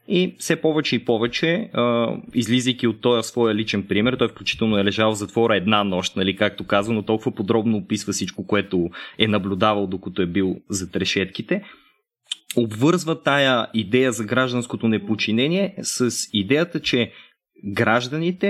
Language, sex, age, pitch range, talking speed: Bulgarian, male, 20-39, 105-140 Hz, 140 wpm